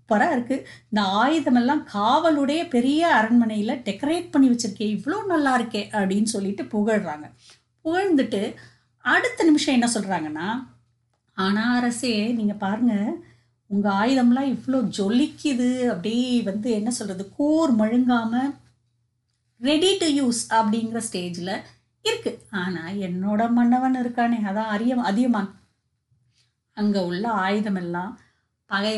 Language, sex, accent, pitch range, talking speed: English, female, Indian, 190-255 Hz, 80 wpm